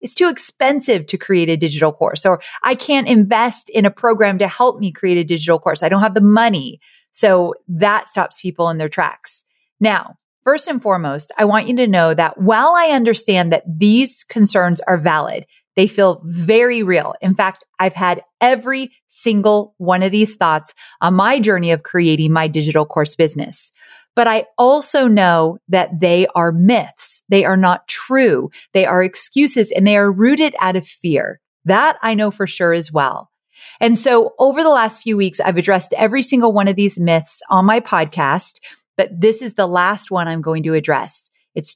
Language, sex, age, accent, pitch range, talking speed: English, female, 30-49, American, 170-225 Hz, 190 wpm